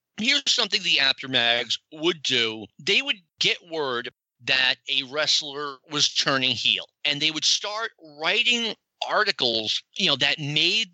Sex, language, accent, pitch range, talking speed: male, English, American, 120-155 Hz, 145 wpm